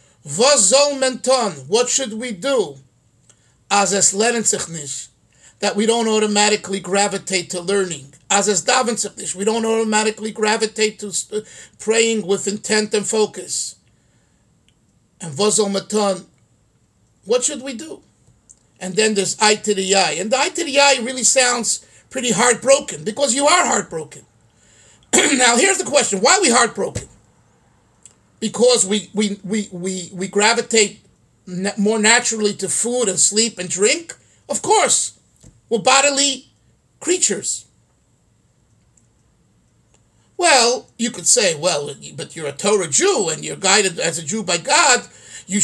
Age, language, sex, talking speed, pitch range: 50-69, English, male, 125 wpm, 200-245 Hz